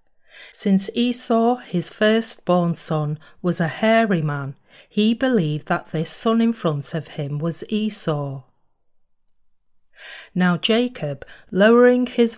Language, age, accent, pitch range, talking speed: English, 40-59, British, 155-210 Hz, 115 wpm